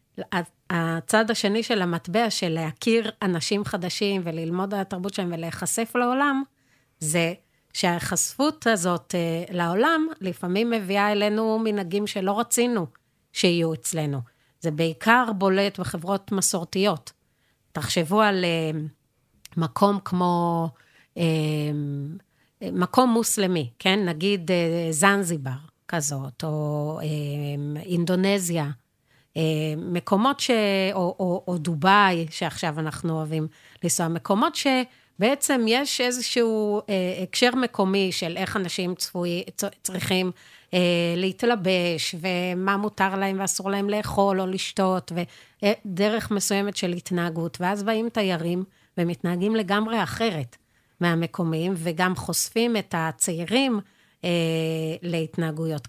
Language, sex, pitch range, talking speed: Hebrew, female, 165-205 Hz, 95 wpm